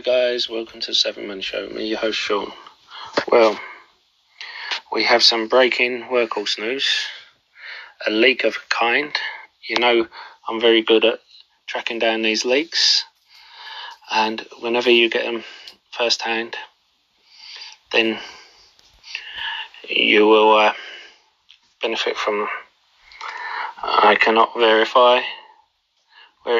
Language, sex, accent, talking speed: English, male, British, 115 wpm